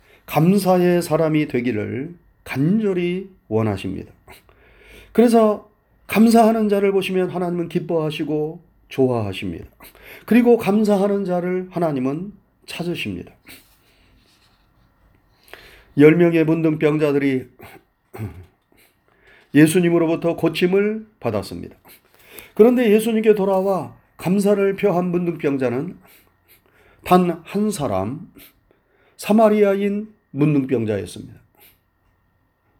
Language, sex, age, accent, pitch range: Korean, male, 40-59, native, 130-210 Hz